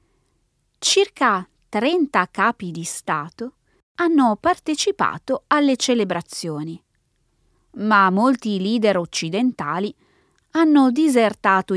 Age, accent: 20-39, native